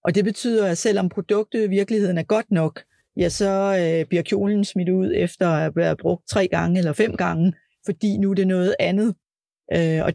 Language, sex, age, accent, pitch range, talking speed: Danish, female, 40-59, native, 165-200 Hz, 195 wpm